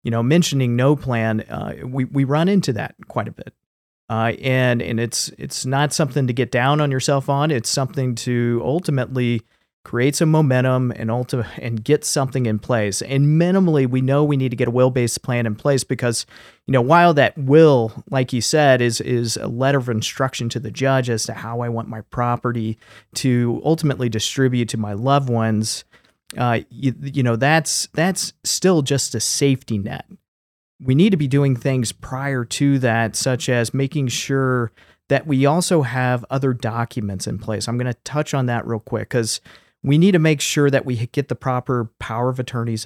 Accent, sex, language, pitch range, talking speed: American, male, English, 115-140 Hz, 195 wpm